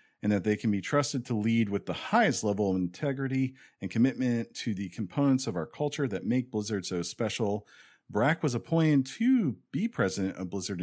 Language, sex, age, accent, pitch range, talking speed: English, male, 40-59, American, 90-115 Hz, 195 wpm